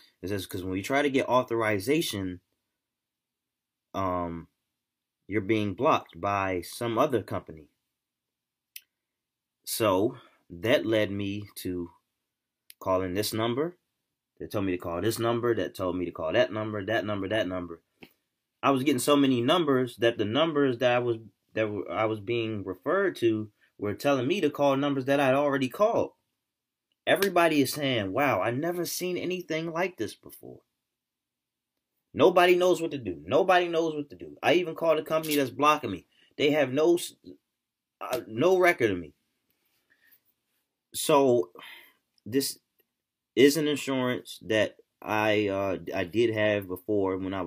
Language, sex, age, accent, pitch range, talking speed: English, male, 20-39, American, 95-140 Hz, 155 wpm